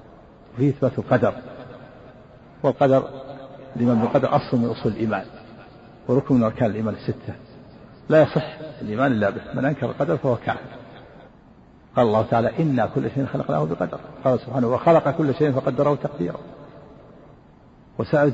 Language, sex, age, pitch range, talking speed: Arabic, male, 50-69, 115-140 Hz, 135 wpm